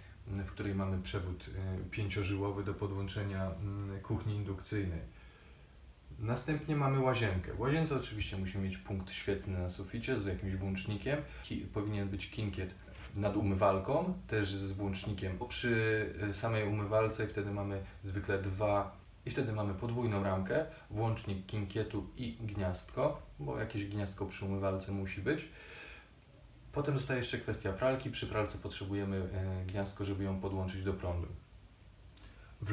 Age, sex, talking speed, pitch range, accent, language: 20-39, male, 130 wpm, 95-110 Hz, native, Polish